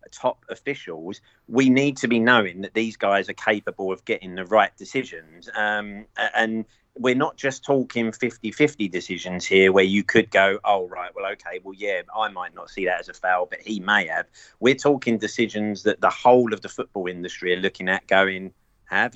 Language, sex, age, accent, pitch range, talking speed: English, male, 30-49, British, 95-120 Hz, 195 wpm